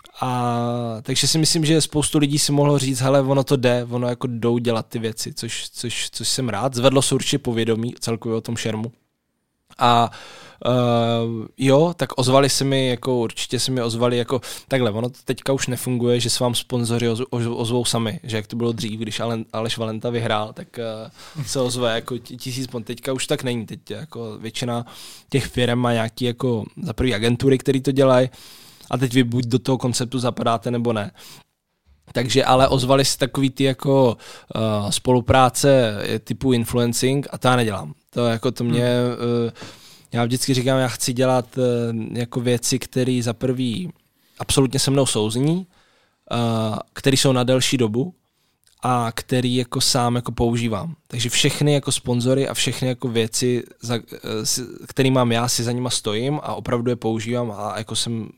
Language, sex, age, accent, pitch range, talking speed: Czech, male, 20-39, native, 115-130 Hz, 180 wpm